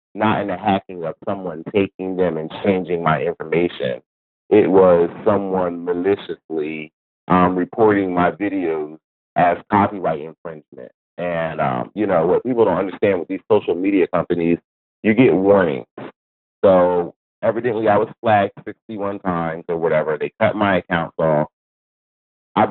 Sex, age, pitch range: male, 30-49, 85-105 Hz